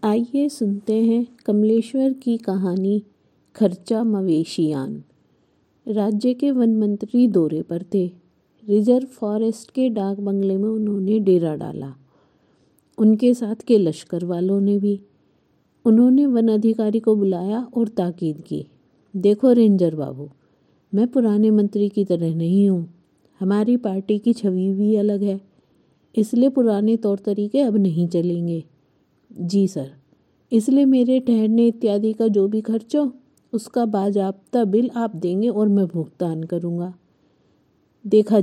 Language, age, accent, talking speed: Hindi, 50-69, native, 130 wpm